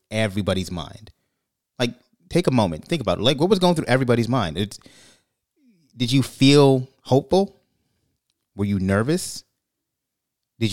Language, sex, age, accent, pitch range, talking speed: English, male, 30-49, American, 105-135 Hz, 140 wpm